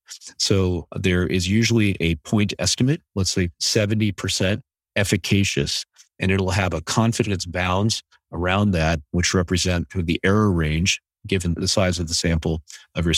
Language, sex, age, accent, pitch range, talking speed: English, male, 50-69, American, 85-105 Hz, 145 wpm